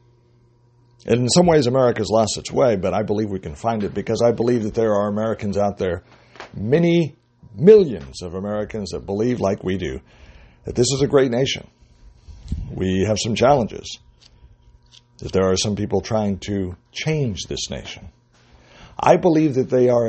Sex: male